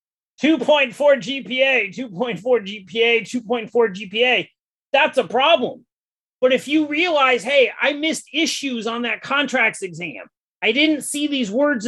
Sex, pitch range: male, 230-290 Hz